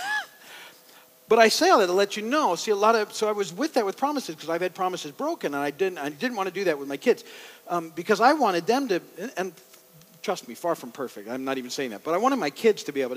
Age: 50-69